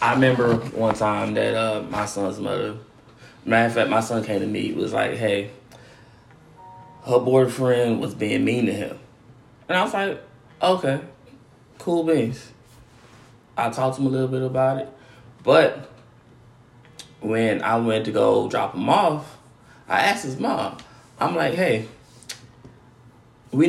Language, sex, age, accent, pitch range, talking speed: English, male, 20-39, American, 115-140 Hz, 150 wpm